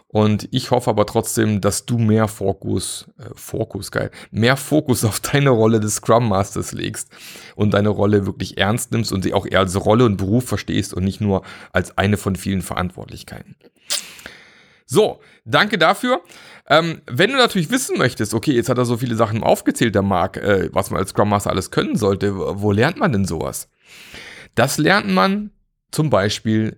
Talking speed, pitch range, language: 180 wpm, 105-125 Hz, German